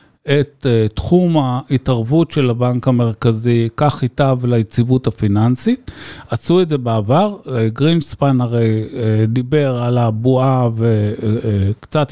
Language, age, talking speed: Hebrew, 50-69, 100 wpm